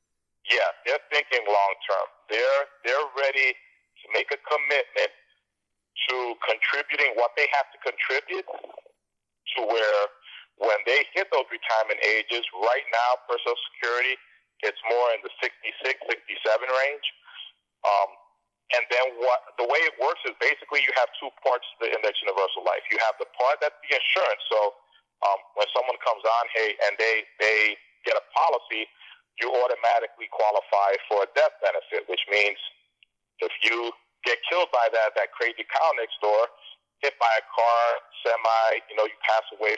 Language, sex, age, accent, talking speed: English, male, 50-69, American, 160 wpm